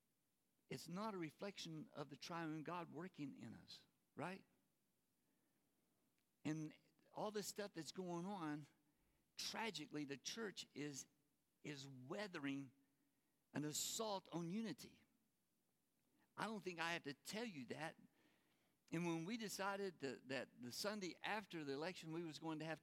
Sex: male